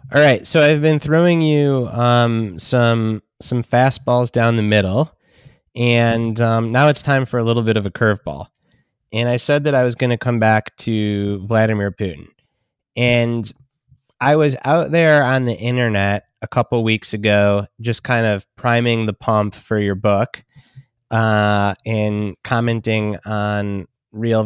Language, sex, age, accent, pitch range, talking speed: English, male, 20-39, American, 110-135 Hz, 160 wpm